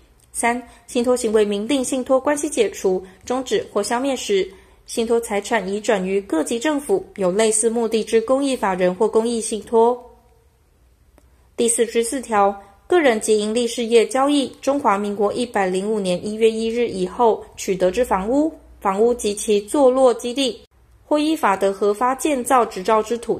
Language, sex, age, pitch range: Chinese, female, 20-39, 205-255 Hz